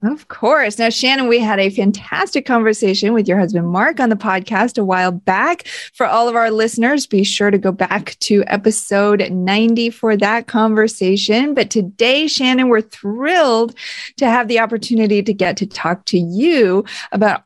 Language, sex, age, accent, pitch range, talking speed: English, female, 30-49, American, 185-235 Hz, 175 wpm